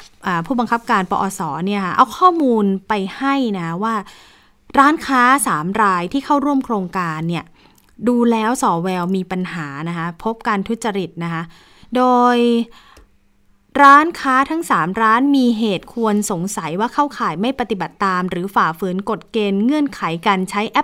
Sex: female